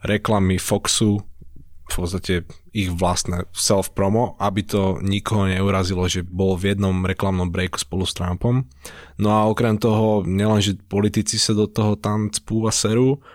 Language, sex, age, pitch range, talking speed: Slovak, male, 20-39, 95-110 Hz, 145 wpm